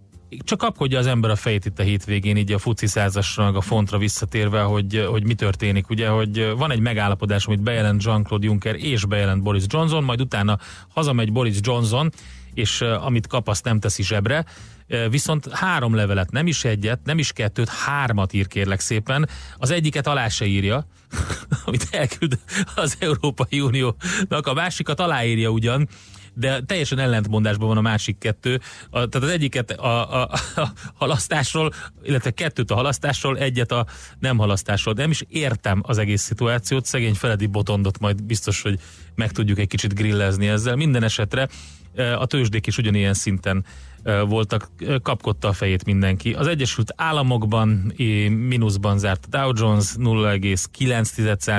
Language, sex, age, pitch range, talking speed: Hungarian, male, 30-49, 100-125 Hz, 155 wpm